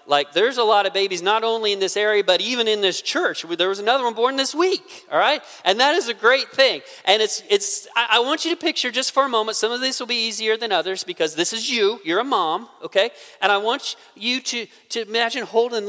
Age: 40-59